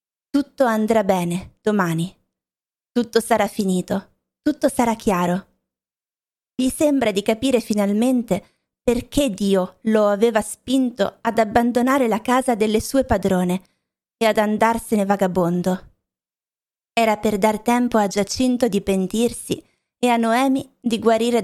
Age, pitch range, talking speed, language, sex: 20-39, 195-235 Hz, 125 wpm, Italian, female